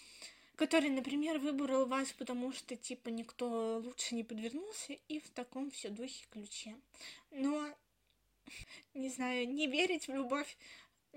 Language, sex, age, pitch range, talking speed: Russian, female, 20-39, 270-335 Hz, 130 wpm